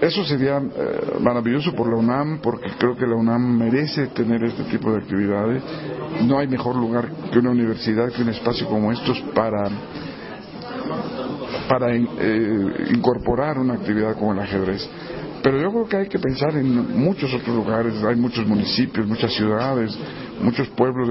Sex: male